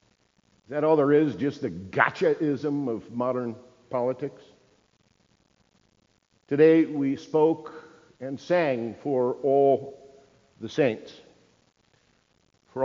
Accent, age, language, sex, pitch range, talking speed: American, 50-69, English, male, 115-145 Hz, 100 wpm